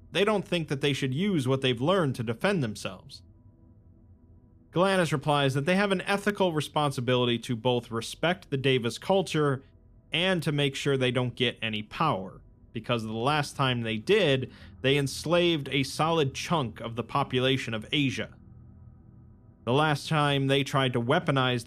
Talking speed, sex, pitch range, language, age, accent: 165 wpm, male, 115-145 Hz, English, 40-59, American